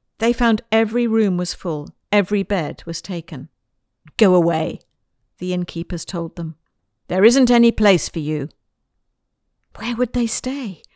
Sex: female